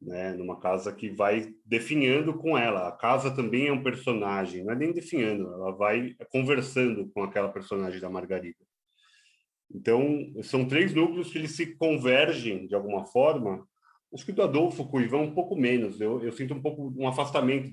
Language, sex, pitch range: Portuguese, male, 105-135 Hz